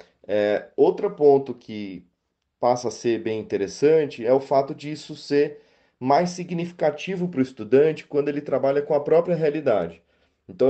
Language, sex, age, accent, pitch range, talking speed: Portuguese, male, 30-49, Brazilian, 120-150 Hz, 155 wpm